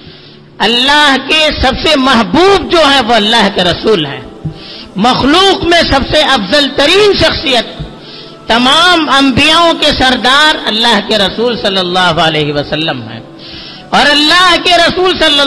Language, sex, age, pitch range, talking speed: Urdu, female, 50-69, 220-315 Hz, 140 wpm